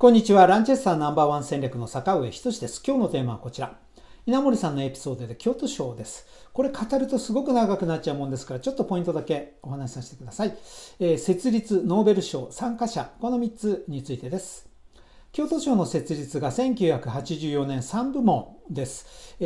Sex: male